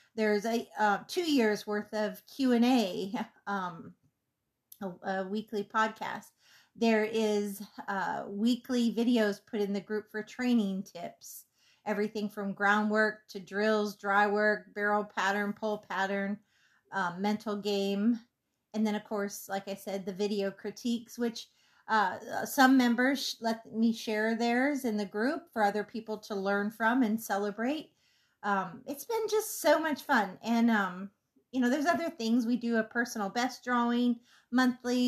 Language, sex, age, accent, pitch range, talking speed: English, female, 30-49, American, 205-240 Hz, 155 wpm